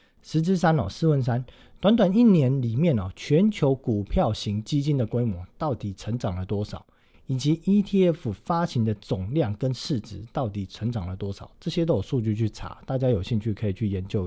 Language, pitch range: Chinese, 105-150 Hz